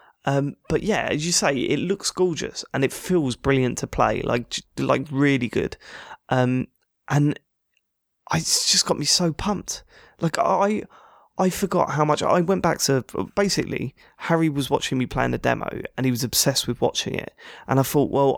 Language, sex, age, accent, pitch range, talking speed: English, male, 20-39, British, 125-170 Hz, 185 wpm